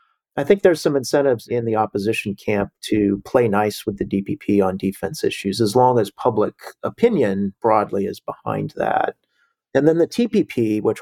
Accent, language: American, English